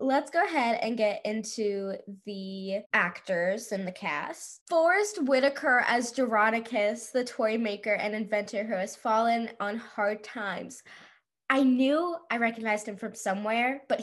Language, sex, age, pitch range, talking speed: English, female, 10-29, 210-275 Hz, 145 wpm